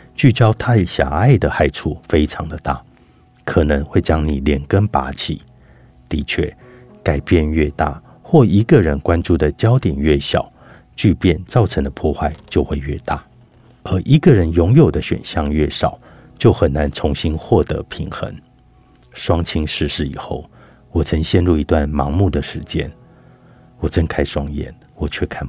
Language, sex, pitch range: Chinese, male, 75-95 Hz